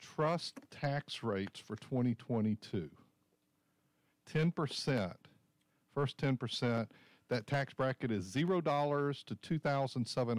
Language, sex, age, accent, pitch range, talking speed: English, male, 50-69, American, 115-150 Hz, 115 wpm